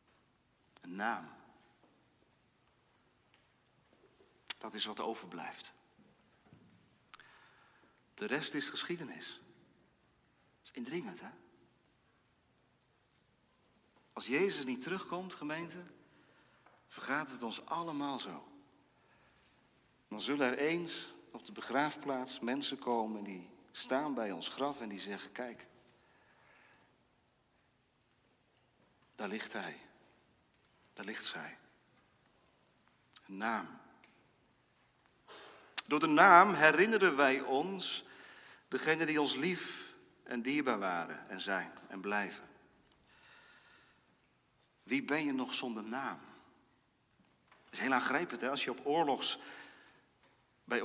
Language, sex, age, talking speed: Dutch, male, 50-69, 95 wpm